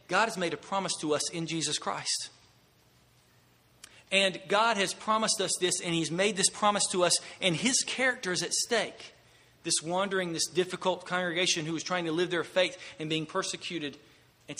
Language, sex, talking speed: English, male, 185 wpm